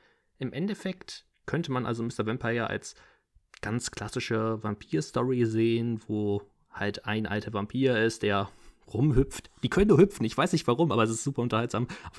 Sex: male